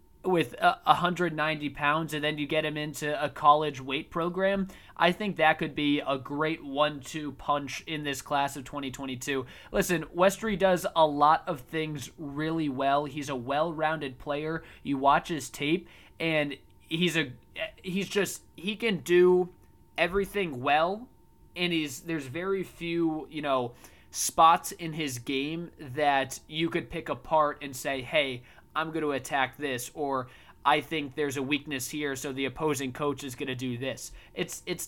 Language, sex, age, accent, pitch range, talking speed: English, male, 20-39, American, 140-170 Hz, 165 wpm